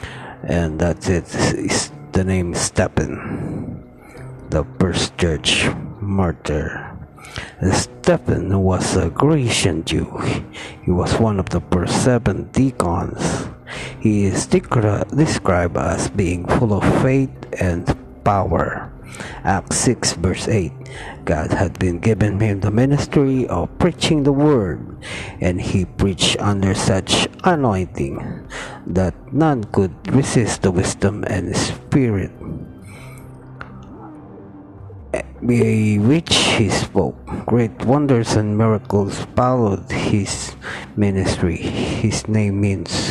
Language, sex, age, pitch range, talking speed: Filipino, male, 50-69, 95-125 Hz, 110 wpm